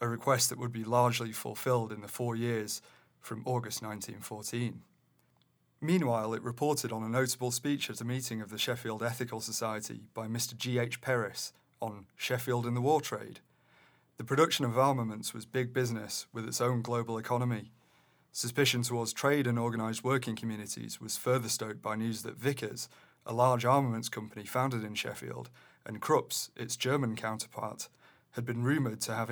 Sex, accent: male, British